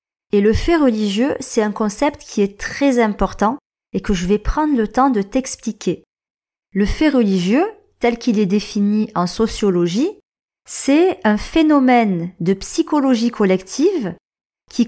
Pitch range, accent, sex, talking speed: 210-285 Hz, French, female, 145 wpm